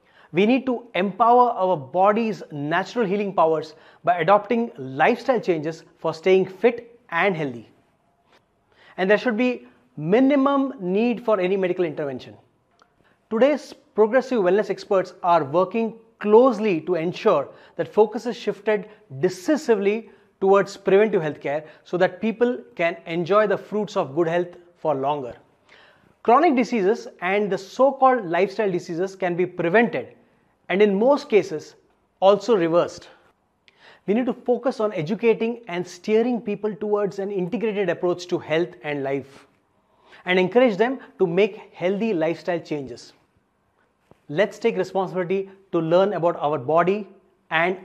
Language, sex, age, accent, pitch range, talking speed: English, male, 30-49, Indian, 170-220 Hz, 135 wpm